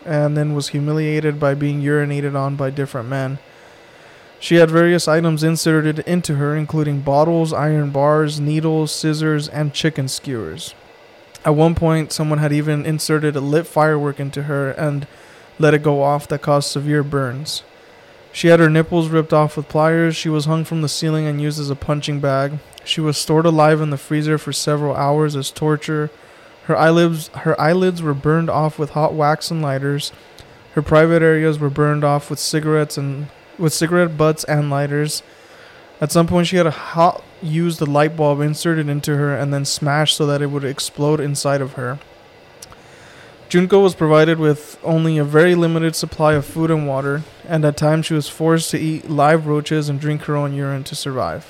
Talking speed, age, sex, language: 190 wpm, 20-39, male, English